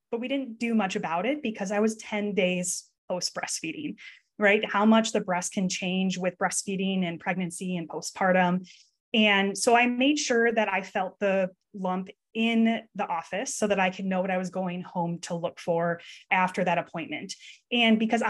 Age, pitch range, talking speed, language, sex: 20-39, 185-215 Hz, 190 wpm, English, female